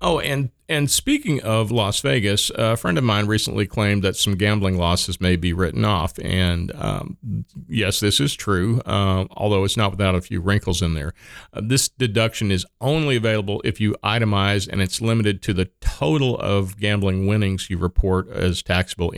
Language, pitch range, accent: English, 95-115 Hz, American